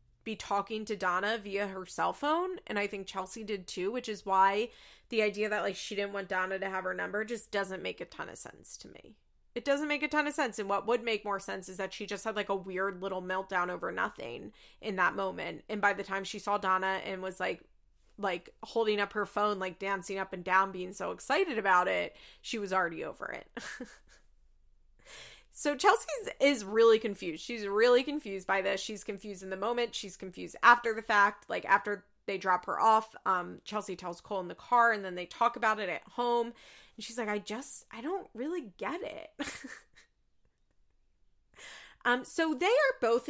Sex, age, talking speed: female, 20-39, 210 wpm